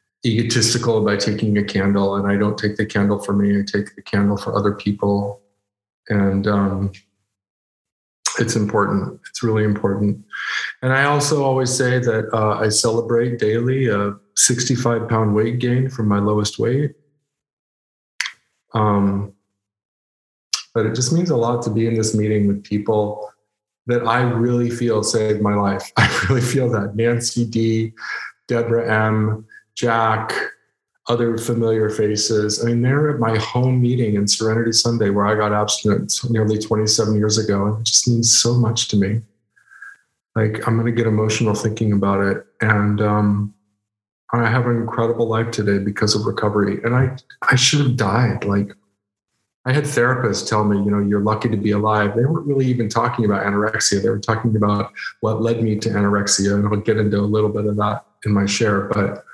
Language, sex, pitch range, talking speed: English, male, 105-115 Hz, 175 wpm